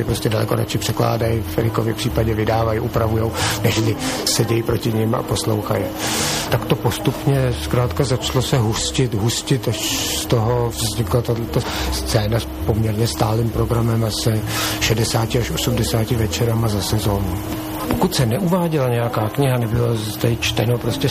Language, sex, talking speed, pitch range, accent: Czech, male, 140 wpm, 110-130 Hz, native